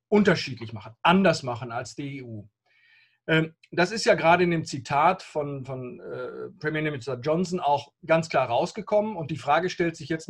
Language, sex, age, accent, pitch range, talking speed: English, male, 40-59, German, 145-185 Hz, 170 wpm